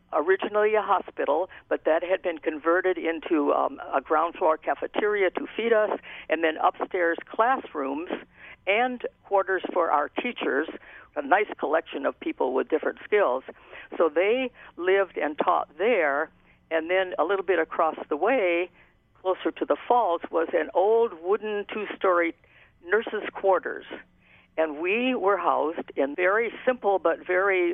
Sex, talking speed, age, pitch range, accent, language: female, 145 wpm, 60-79, 165-275 Hz, American, English